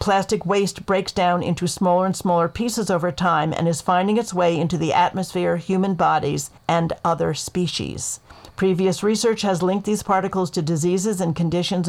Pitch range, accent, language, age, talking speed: 170-195 Hz, American, English, 50-69, 170 wpm